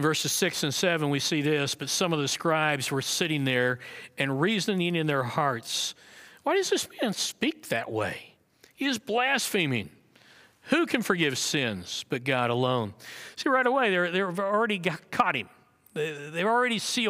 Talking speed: 180 wpm